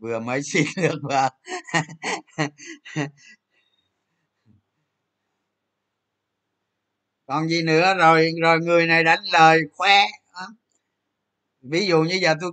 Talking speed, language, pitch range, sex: 95 wpm, Vietnamese, 130-185 Hz, male